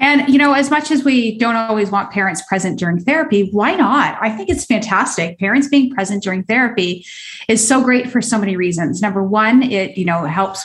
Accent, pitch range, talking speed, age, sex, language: American, 190-250 Hz, 215 wpm, 30-49, female, English